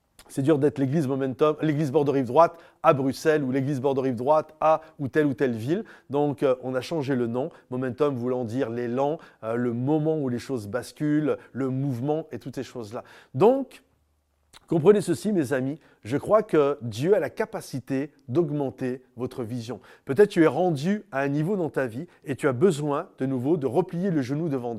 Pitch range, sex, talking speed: 130-165 Hz, male, 190 wpm